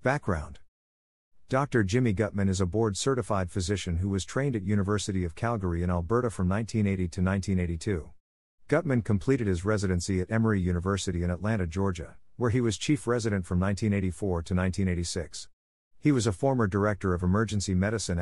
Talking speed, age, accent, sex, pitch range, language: 160 wpm, 50-69, American, male, 90-110 Hz, English